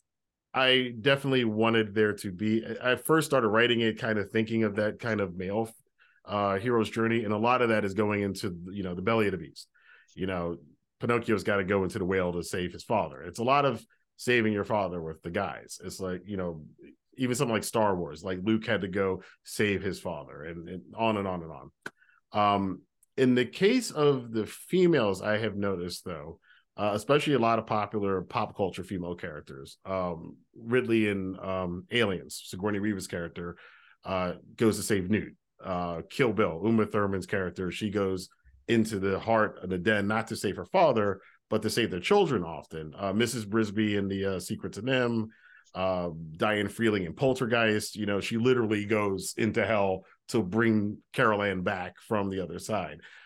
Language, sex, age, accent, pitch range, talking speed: English, male, 40-59, American, 95-115 Hz, 195 wpm